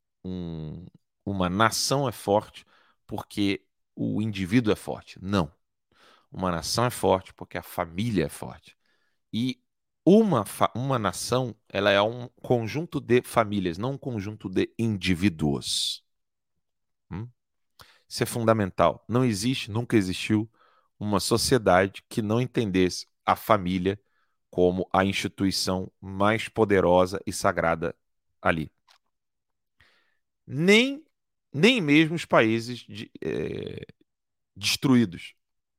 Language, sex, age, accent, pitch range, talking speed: Portuguese, male, 40-59, Brazilian, 90-115 Hz, 100 wpm